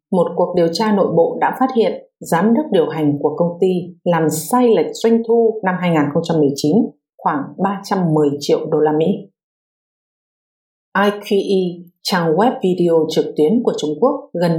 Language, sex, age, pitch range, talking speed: English, female, 50-69, 155-220 Hz, 160 wpm